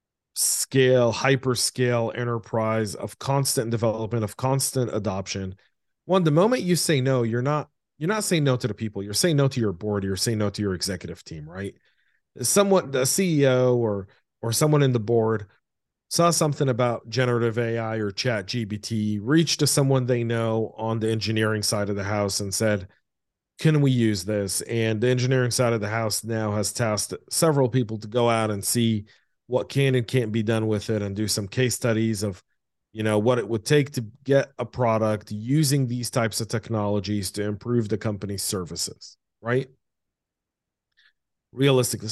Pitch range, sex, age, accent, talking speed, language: 110-135 Hz, male, 40-59, American, 180 wpm, English